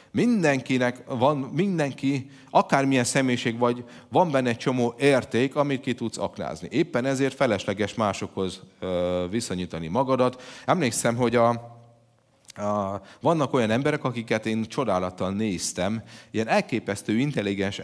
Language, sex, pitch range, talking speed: Hungarian, male, 105-130 Hz, 120 wpm